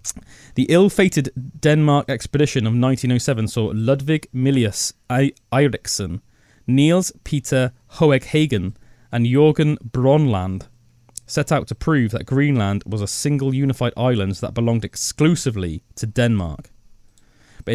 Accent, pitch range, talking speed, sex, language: British, 110-140 Hz, 115 wpm, male, English